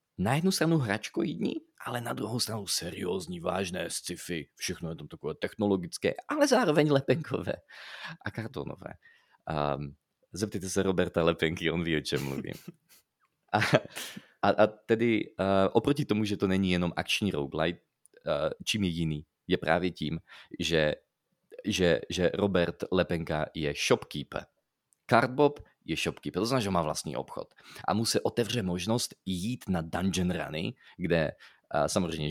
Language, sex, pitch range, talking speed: Slovak, male, 85-120 Hz, 145 wpm